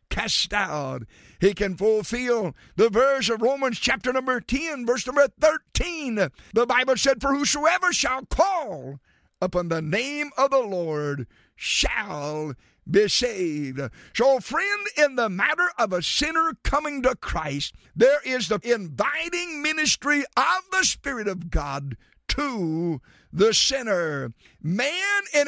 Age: 50-69